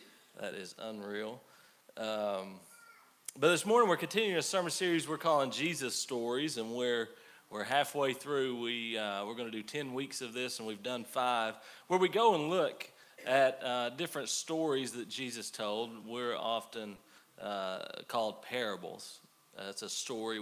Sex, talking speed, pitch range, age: male, 165 wpm, 110-140 Hz, 40-59